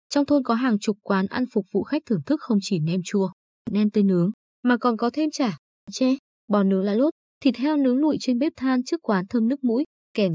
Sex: female